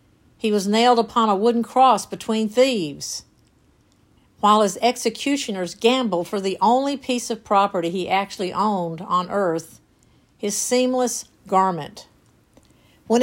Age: 50-69